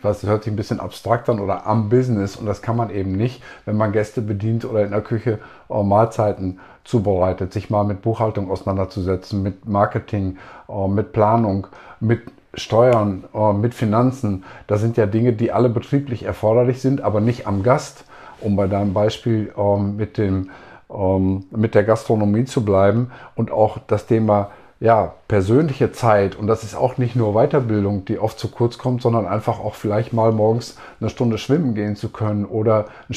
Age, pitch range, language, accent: 50-69, 105-120 Hz, German, German